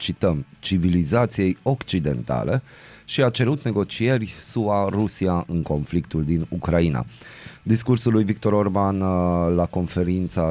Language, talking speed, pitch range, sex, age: Romanian, 110 wpm, 85-110 Hz, male, 30-49